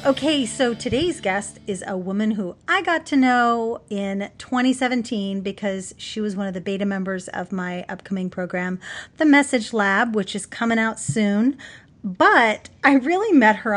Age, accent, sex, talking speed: 30-49, American, female, 170 wpm